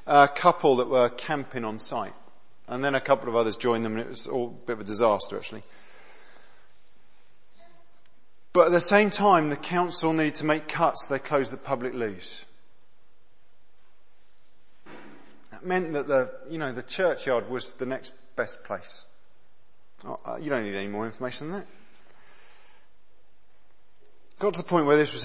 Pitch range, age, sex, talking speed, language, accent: 135-180 Hz, 40-59, male, 165 wpm, English, British